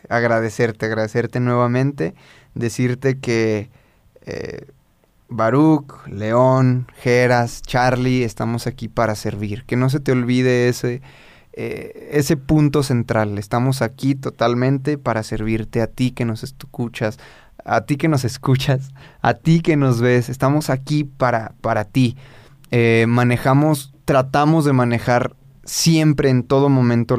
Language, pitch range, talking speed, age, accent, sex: Spanish, 115-140 Hz, 125 wpm, 20-39, Mexican, male